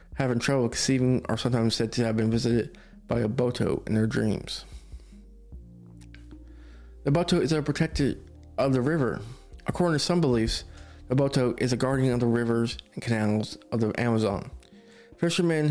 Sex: male